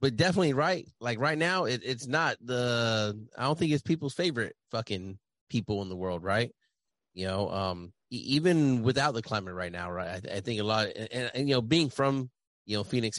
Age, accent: 30-49, American